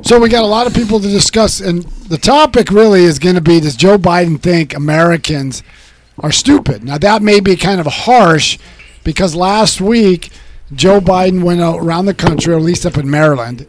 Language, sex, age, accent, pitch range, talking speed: English, male, 50-69, American, 140-180 Hz, 195 wpm